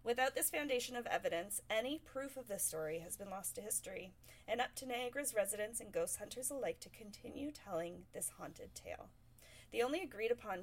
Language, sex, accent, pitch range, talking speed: English, female, American, 170-245 Hz, 185 wpm